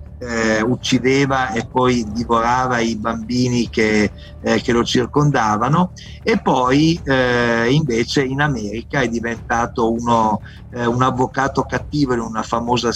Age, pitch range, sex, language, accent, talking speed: 50-69, 115-145 Hz, male, Italian, native, 130 wpm